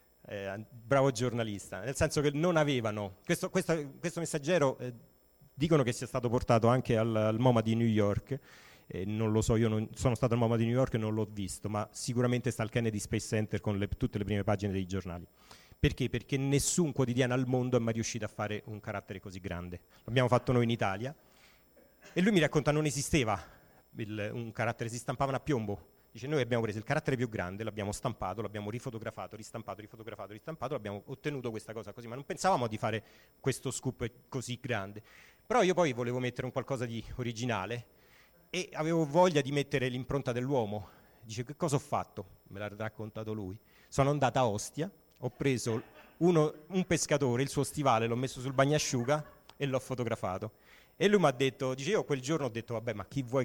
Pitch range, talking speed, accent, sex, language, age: 110-140 Hz, 200 wpm, native, male, Italian, 40-59